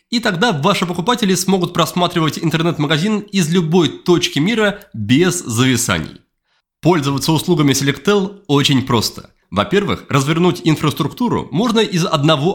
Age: 20-39